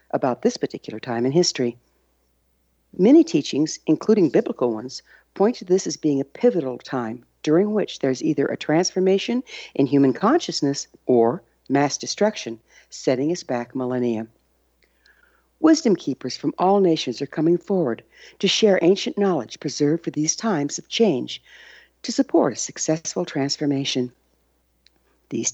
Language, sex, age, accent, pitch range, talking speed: English, female, 60-79, American, 125-195 Hz, 140 wpm